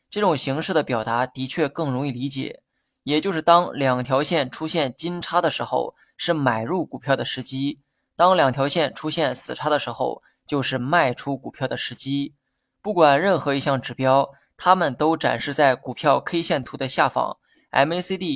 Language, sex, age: Chinese, male, 20-39